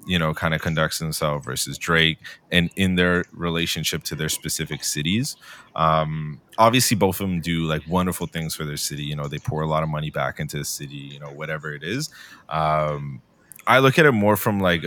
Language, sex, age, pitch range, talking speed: English, male, 30-49, 75-95 Hz, 215 wpm